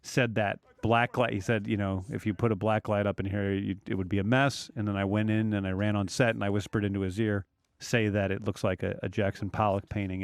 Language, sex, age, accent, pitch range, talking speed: English, male, 40-59, American, 100-130 Hz, 280 wpm